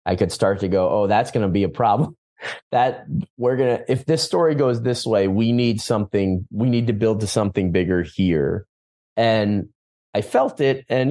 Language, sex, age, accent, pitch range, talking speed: English, male, 30-49, American, 95-125 Hz, 205 wpm